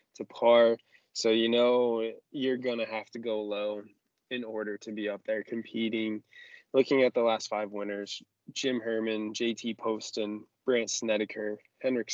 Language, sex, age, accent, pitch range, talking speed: English, male, 20-39, American, 110-125 Hz, 155 wpm